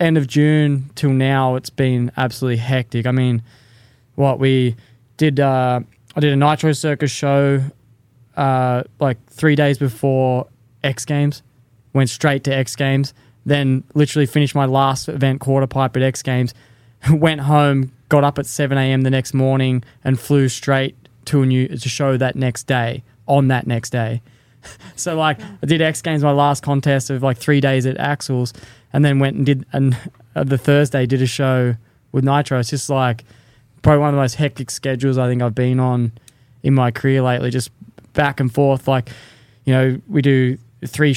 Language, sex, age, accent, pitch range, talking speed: English, male, 20-39, Australian, 125-140 Hz, 185 wpm